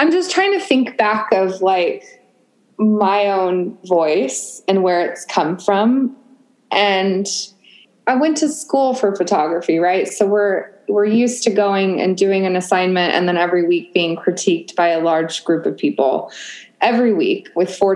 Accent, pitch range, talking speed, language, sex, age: American, 190-255 Hz, 165 wpm, English, female, 20-39